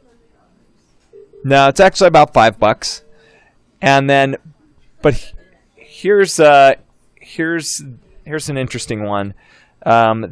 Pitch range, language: 115-150 Hz, English